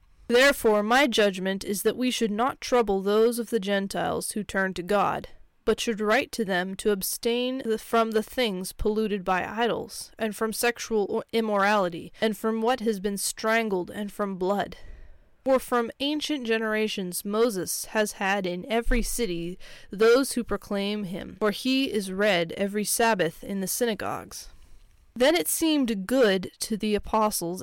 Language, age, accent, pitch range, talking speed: English, 20-39, American, 195-230 Hz, 160 wpm